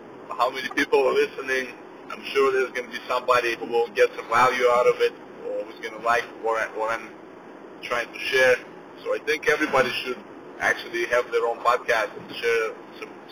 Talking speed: 195 wpm